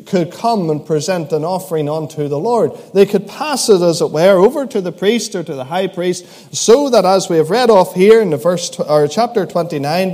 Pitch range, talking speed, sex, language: 160-215 Hz, 230 wpm, male, English